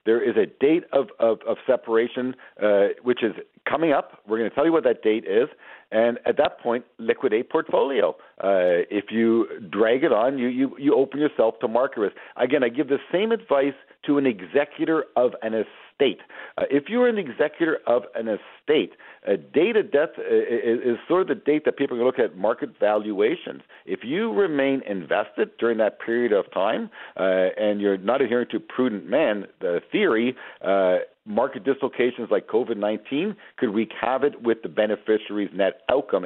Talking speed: 180 wpm